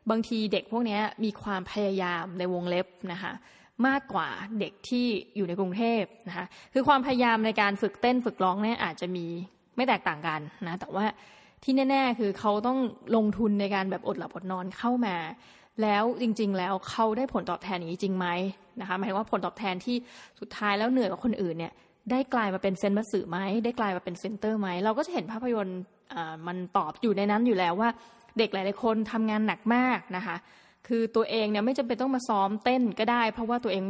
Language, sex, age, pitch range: Thai, female, 20-39, 190-235 Hz